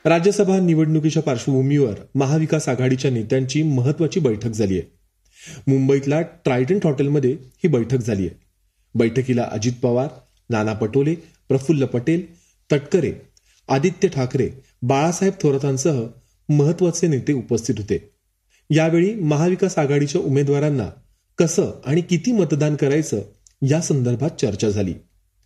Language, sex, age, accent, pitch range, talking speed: Marathi, male, 30-49, native, 115-160 Hz, 110 wpm